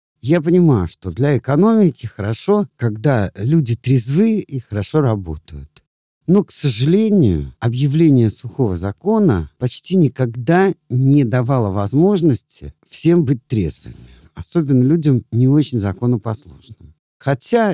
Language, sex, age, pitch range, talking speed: Russian, male, 50-69, 105-145 Hz, 110 wpm